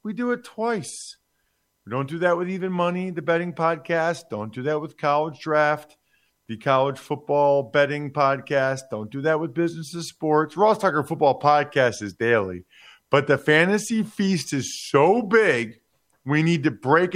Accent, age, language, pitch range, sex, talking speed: American, 50-69, English, 140-175 Hz, male, 170 wpm